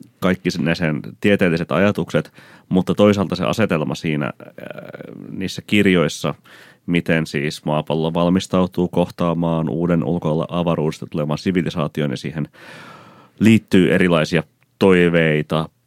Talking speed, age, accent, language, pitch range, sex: 100 wpm, 30-49, native, Finnish, 75-90 Hz, male